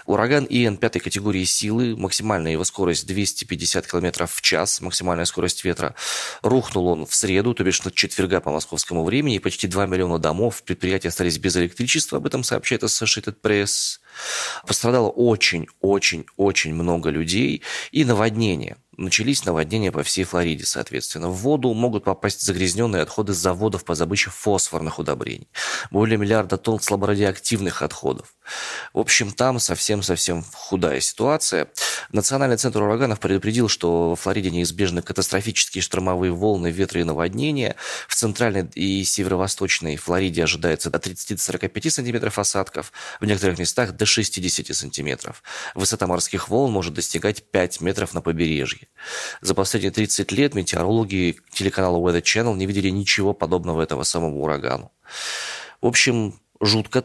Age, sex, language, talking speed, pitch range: 20-39, male, Russian, 135 wpm, 90-110 Hz